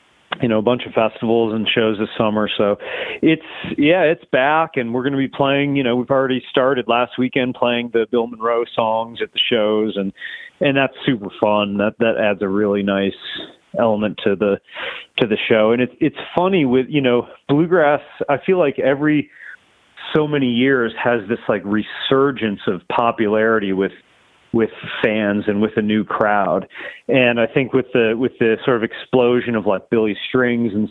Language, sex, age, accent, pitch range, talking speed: English, male, 30-49, American, 110-130 Hz, 185 wpm